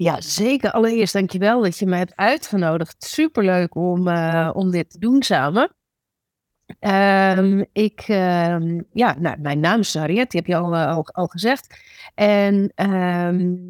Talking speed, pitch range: 160 wpm, 165-205 Hz